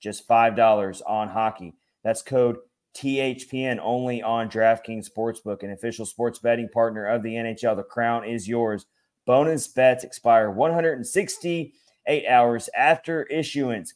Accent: American